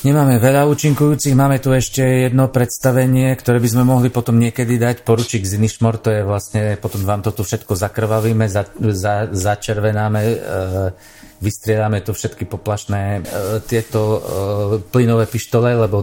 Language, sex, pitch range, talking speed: Slovak, male, 100-115 Hz, 140 wpm